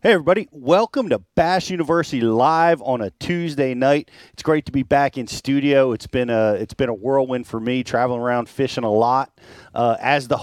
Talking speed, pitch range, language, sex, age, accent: 200 wpm, 115-145 Hz, English, male, 40-59, American